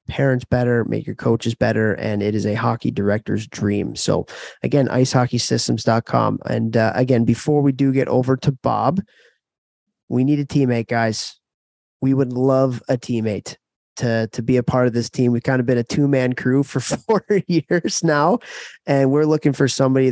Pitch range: 115-140 Hz